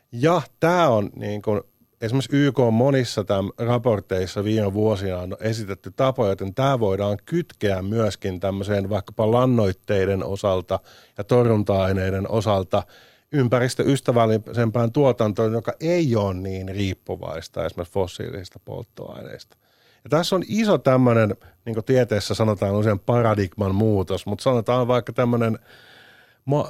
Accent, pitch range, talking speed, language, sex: native, 100-125 Hz, 120 wpm, Finnish, male